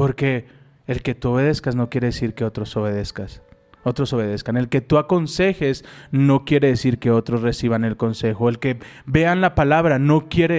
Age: 30-49